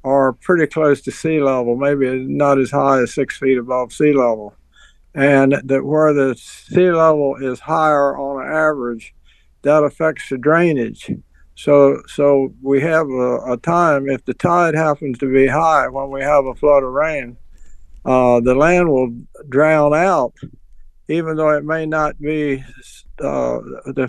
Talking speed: 160 wpm